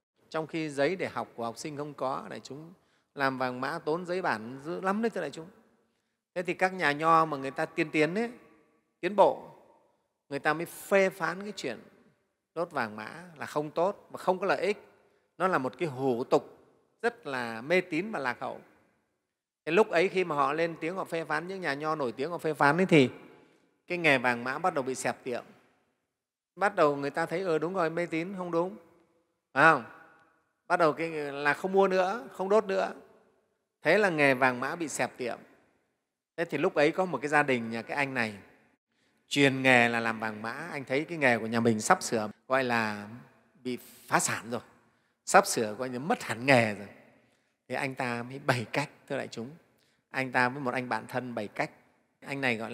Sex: male